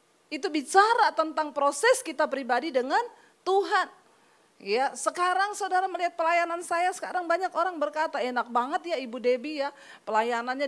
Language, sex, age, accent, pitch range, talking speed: Indonesian, female, 40-59, native, 280-370 Hz, 140 wpm